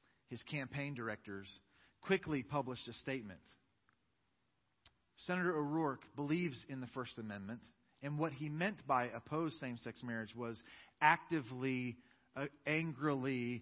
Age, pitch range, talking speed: 40-59, 120-170 Hz, 115 wpm